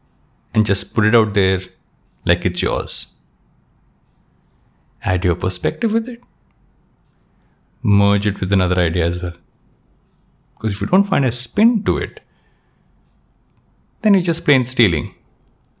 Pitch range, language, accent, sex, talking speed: 90-120 Hz, English, Indian, male, 135 wpm